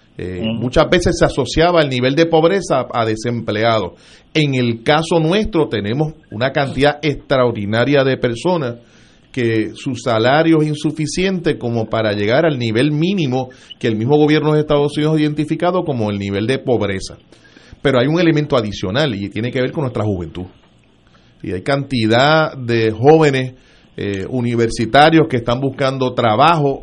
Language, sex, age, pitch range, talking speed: Spanish, male, 40-59, 115-155 Hz, 155 wpm